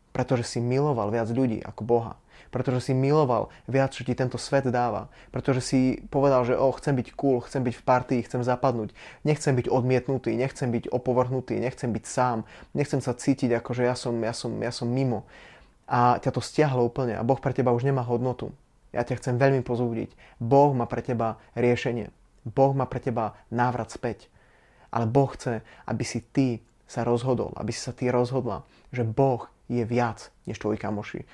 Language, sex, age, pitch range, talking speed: Slovak, male, 20-39, 120-135 Hz, 190 wpm